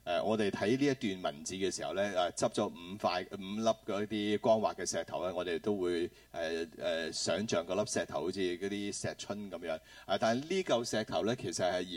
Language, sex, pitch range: Chinese, male, 100-130 Hz